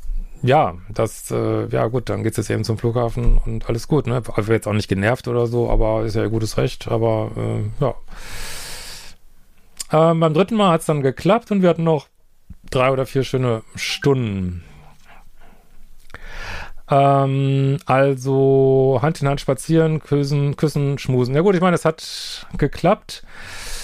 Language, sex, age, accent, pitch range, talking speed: German, male, 40-59, German, 115-145 Hz, 165 wpm